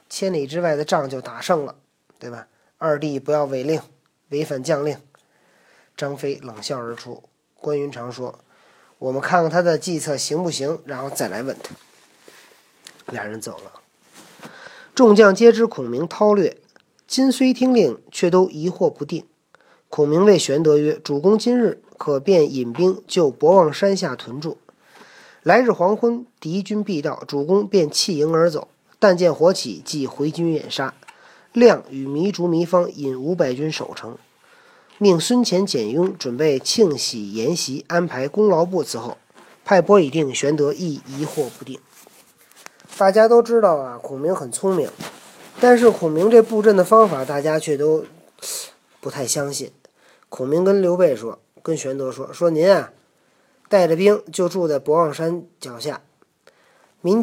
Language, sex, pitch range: Chinese, male, 145-205 Hz